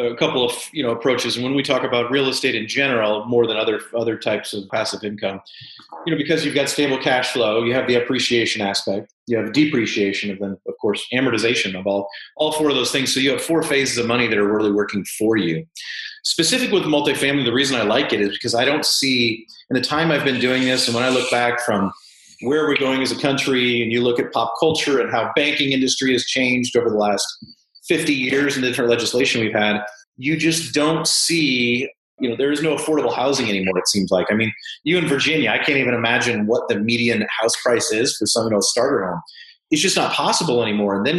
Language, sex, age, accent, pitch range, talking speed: English, male, 30-49, American, 115-155 Hz, 235 wpm